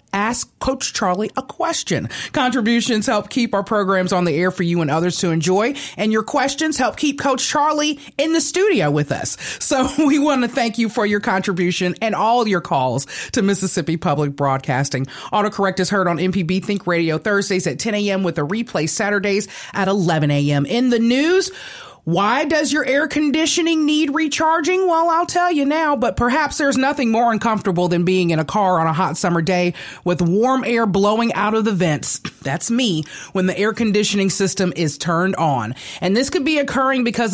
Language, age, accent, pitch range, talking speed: English, 30-49, American, 180-270 Hz, 195 wpm